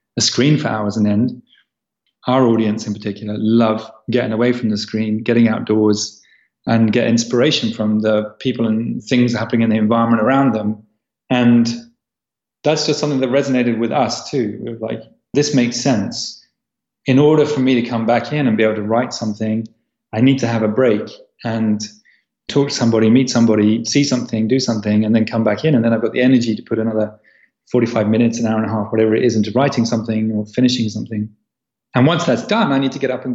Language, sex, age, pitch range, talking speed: English, male, 30-49, 110-130 Hz, 210 wpm